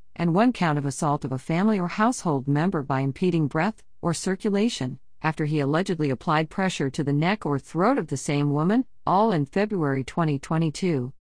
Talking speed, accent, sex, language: 180 wpm, American, female, English